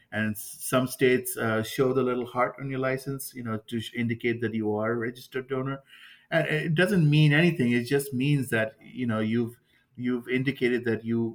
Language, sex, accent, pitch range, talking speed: English, male, Indian, 110-130 Hz, 200 wpm